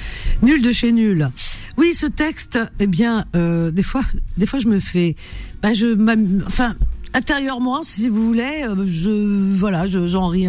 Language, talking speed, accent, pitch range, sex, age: French, 175 wpm, French, 160-230 Hz, female, 50-69